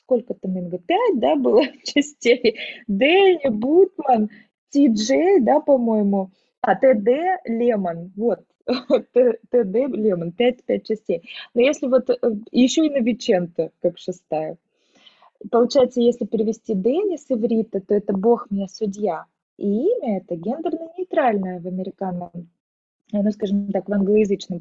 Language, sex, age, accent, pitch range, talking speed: Russian, female, 20-39, native, 195-260 Hz, 125 wpm